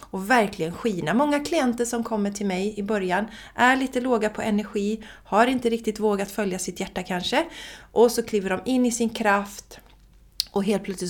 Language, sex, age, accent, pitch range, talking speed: Swedish, female, 30-49, native, 180-235 Hz, 190 wpm